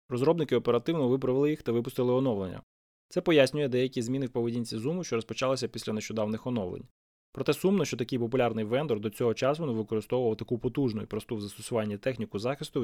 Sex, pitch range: male, 115-140 Hz